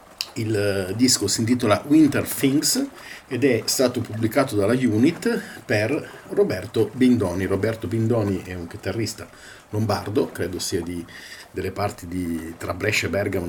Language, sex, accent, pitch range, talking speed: Italian, male, native, 95-115 Hz, 140 wpm